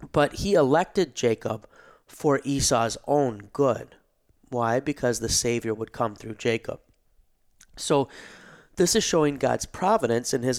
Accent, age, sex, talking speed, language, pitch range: American, 30-49, male, 135 wpm, English, 115-135 Hz